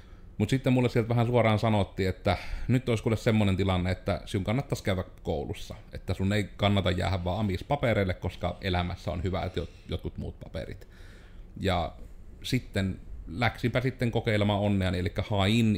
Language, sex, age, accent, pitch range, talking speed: Finnish, male, 30-49, native, 90-105 Hz, 155 wpm